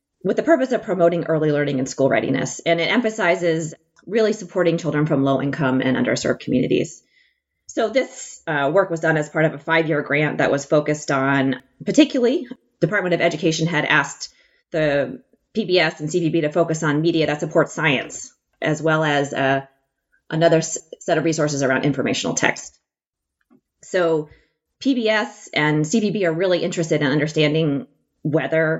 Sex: female